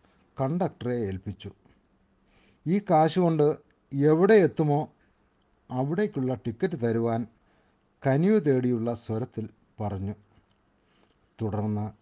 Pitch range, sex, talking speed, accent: 105-140 Hz, male, 70 wpm, native